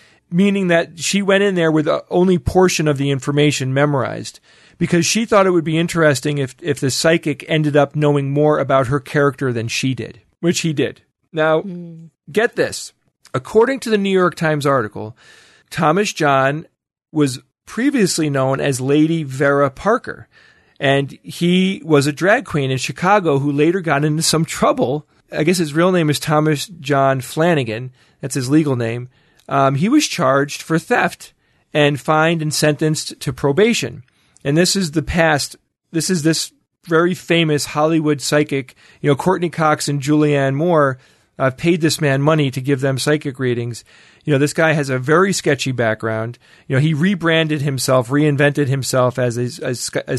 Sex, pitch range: male, 135-165 Hz